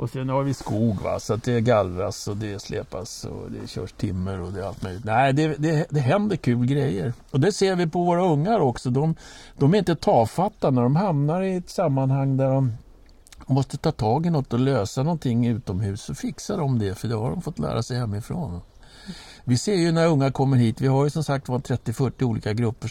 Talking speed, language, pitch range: 225 wpm, Swedish, 110-170 Hz